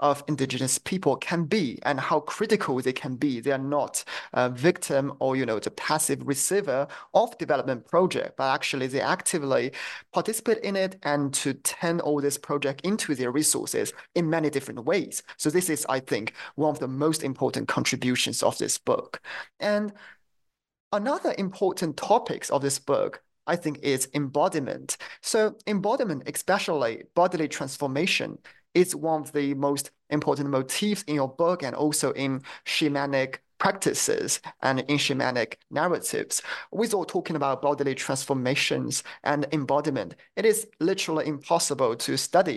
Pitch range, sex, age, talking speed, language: 135-175 Hz, male, 30-49, 150 wpm, English